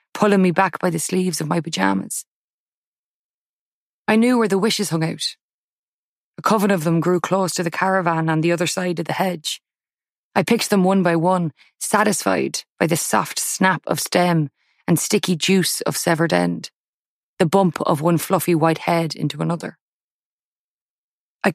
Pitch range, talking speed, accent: 165-190 Hz, 170 wpm, Irish